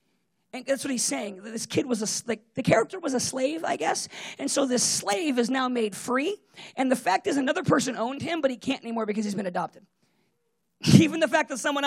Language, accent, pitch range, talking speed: English, American, 230-300 Hz, 235 wpm